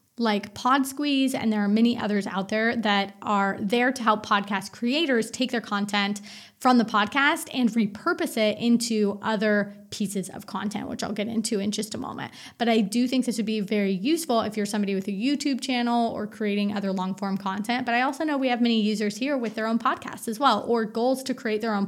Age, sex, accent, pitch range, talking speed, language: 20-39, female, American, 210-250 Hz, 220 wpm, English